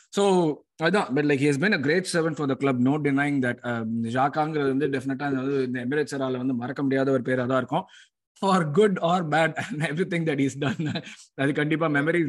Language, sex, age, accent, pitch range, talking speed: Tamil, male, 20-39, native, 130-150 Hz, 195 wpm